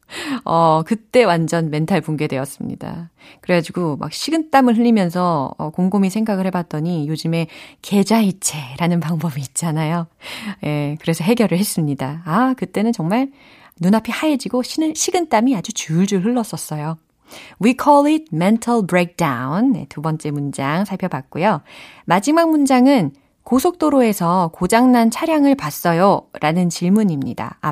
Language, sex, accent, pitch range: Korean, female, native, 165-270 Hz